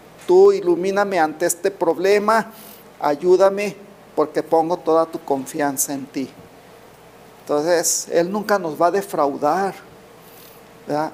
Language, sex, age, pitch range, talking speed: Spanish, male, 50-69, 155-200 Hz, 115 wpm